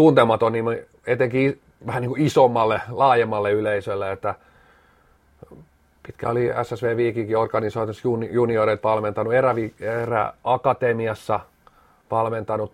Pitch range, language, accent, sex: 105-120 Hz, Finnish, native, male